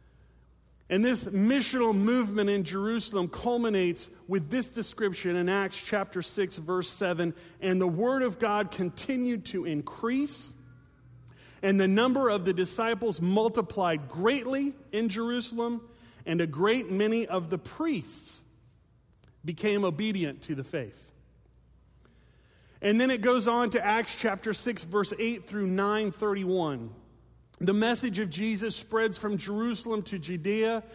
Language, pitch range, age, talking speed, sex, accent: English, 175-225 Hz, 30-49, 130 wpm, male, American